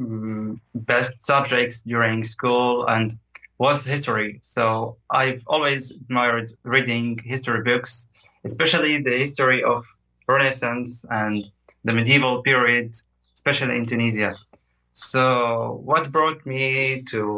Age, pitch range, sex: 20-39, 115-145 Hz, male